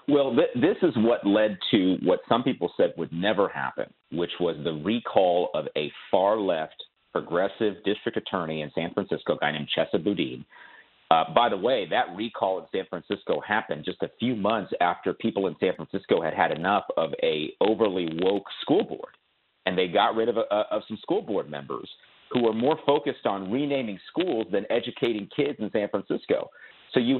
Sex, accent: male, American